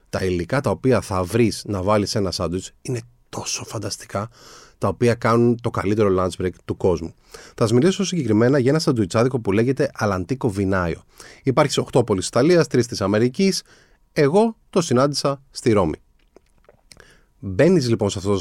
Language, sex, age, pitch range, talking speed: Greek, male, 30-49, 100-155 Hz, 170 wpm